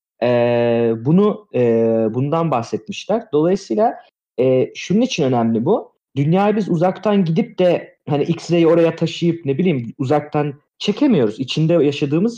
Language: Turkish